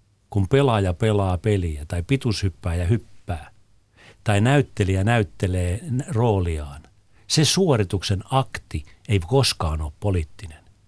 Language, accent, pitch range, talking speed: Finnish, native, 100-130 Hz, 105 wpm